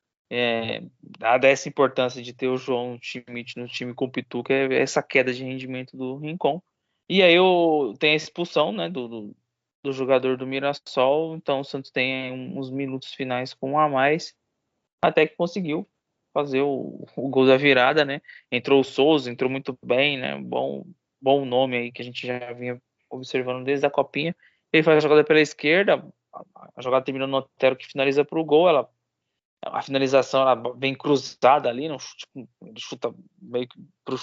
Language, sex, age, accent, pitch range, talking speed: Portuguese, male, 20-39, Brazilian, 130-150 Hz, 185 wpm